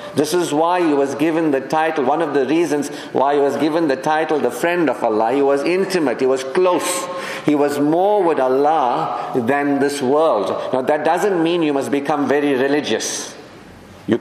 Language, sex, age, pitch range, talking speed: English, male, 50-69, 135-170 Hz, 195 wpm